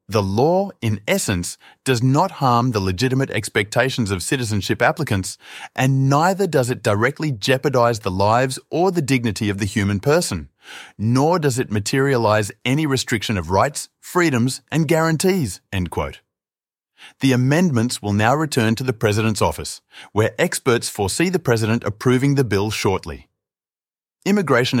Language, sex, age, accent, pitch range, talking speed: English, male, 30-49, Australian, 105-135 Hz, 145 wpm